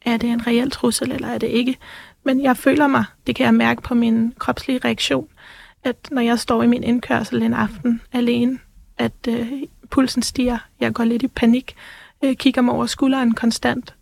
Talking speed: 195 wpm